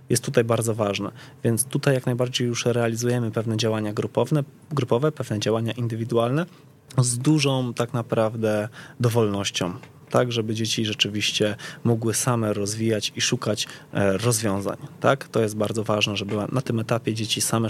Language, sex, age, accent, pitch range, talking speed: Polish, male, 20-39, native, 110-130 Hz, 140 wpm